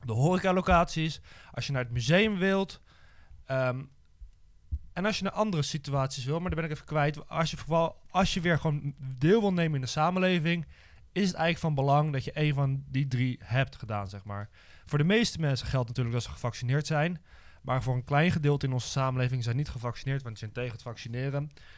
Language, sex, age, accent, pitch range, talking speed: Dutch, male, 20-39, Dutch, 125-165 Hz, 220 wpm